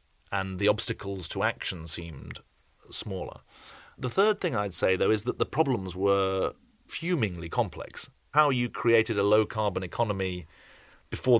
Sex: male